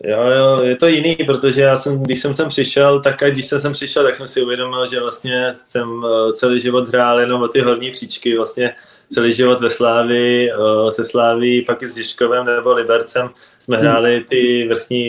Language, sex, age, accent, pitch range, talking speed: Czech, male, 20-39, native, 105-120 Hz, 190 wpm